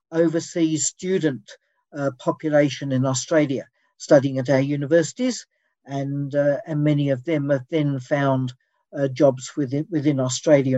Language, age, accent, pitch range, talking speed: English, 60-79, British, 145-180 Hz, 135 wpm